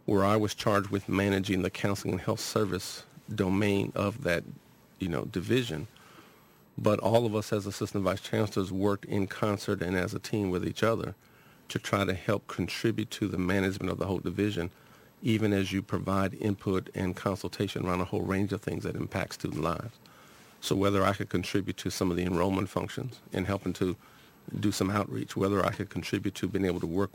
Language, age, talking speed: English, 50-69, 200 wpm